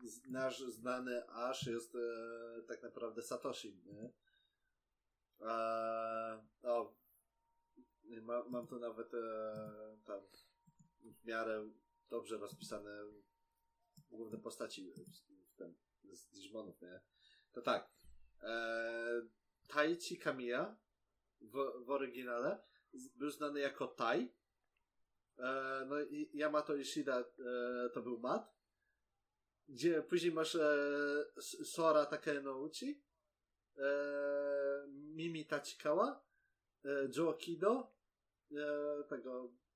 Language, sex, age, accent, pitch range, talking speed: Polish, male, 20-39, native, 120-155 Hz, 90 wpm